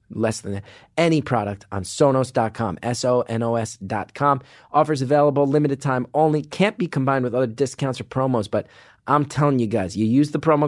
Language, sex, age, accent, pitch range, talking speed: English, male, 30-49, American, 110-145 Hz, 165 wpm